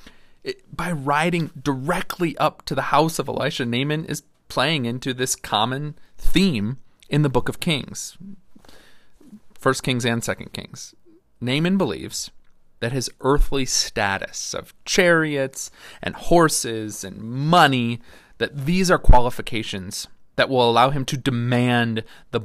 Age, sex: 30-49, male